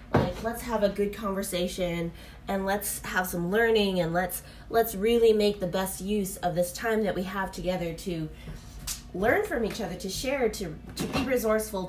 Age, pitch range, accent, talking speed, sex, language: 20-39, 185-235 Hz, American, 185 wpm, female, English